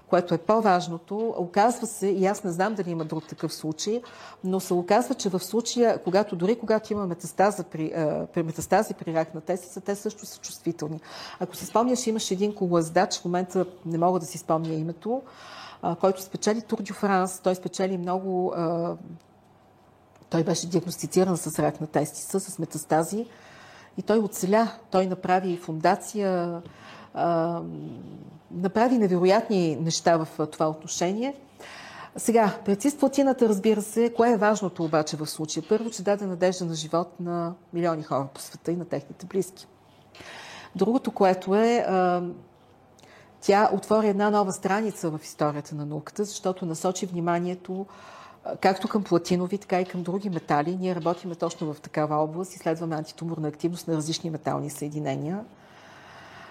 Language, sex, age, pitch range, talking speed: Bulgarian, female, 40-59, 165-205 Hz, 150 wpm